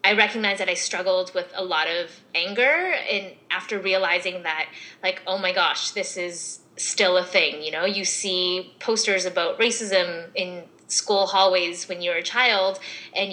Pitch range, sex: 180-215 Hz, female